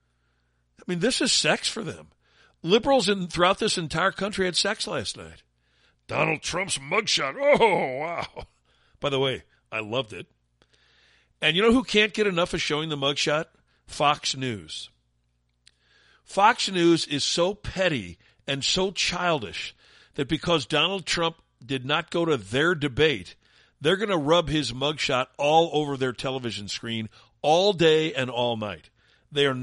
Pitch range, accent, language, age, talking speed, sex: 105-170 Hz, American, English, 50-69, 155 wpm, male